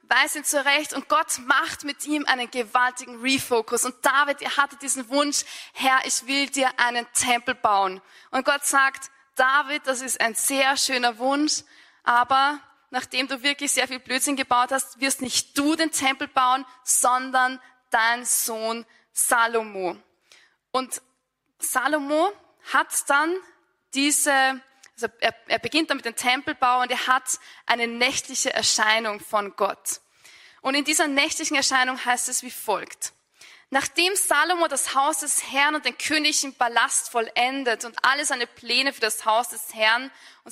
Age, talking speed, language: 20-39, 155 wpm, German